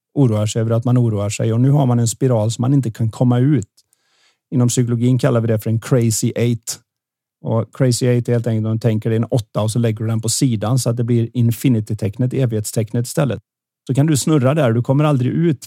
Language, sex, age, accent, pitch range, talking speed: Swedish, male, 30-49, native, 115-135 Hz, 240 wpm